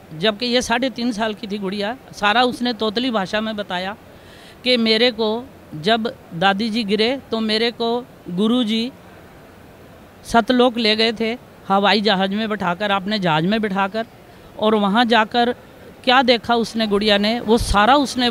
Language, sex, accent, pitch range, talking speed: Hindi, female, native, 205-235 Hz, 155 wpm